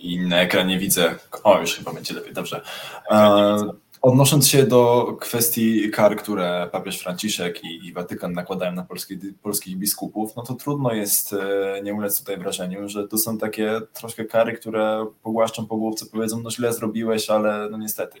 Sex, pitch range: male, 90-110 Hz